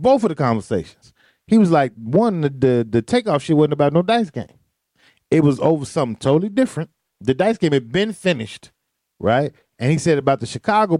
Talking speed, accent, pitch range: 200 wpm, American, 140-220 Hz